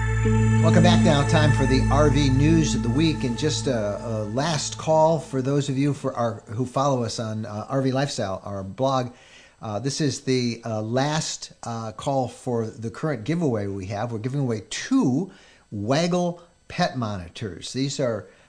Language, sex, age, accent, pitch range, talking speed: English, male, 50-69, American, 110-140 Hz, 180 wpm